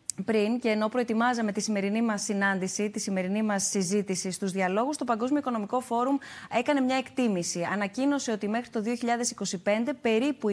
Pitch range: 195-245 Hz